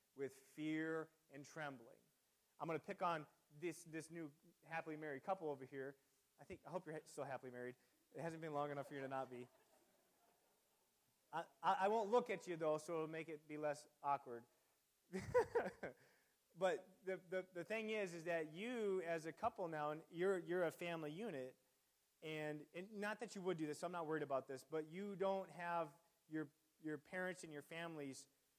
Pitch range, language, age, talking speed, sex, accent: 140-185 Hz, English, 30-49, 195 wpm, male, American